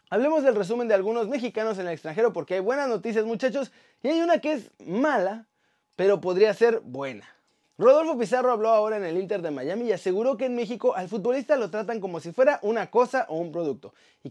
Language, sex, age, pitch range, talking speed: Spanish, male, 30-49, 185-250 Hz, 215 wpm